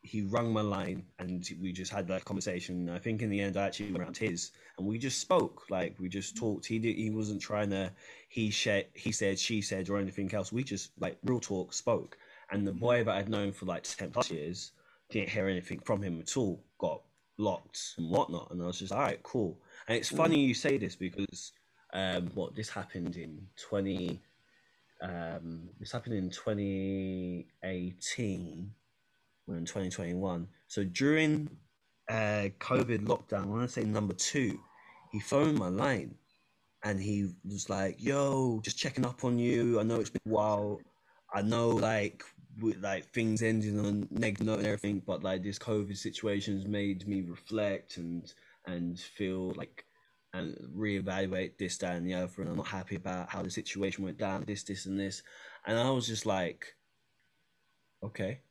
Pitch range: 95-110 Hz